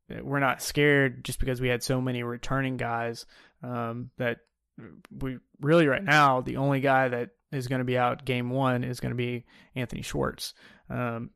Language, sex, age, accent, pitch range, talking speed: English, male, 20-39, American, 120-140 Hz, 185 wpm